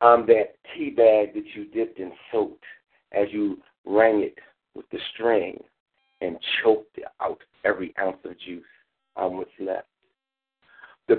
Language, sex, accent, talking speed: English, male, American, 145 wpm